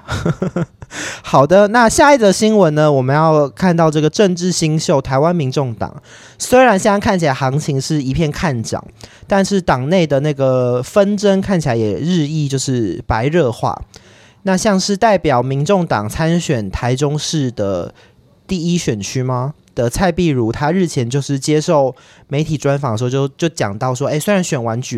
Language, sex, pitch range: Chinese, male, 125-180 Hz